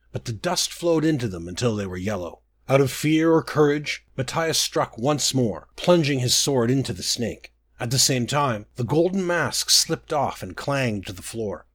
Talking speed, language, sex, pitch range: 200 wpm, English, male, 110-150 Hz